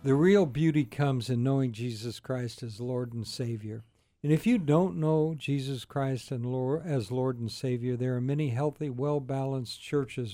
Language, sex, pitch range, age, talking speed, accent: English, male, 120-150 Hz, 60-79, 175 wpm, American